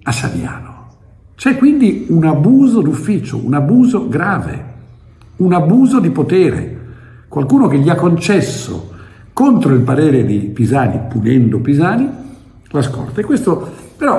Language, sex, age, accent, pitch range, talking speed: Italian, male, 60-79, native, 115-160 Hz, 130 wpm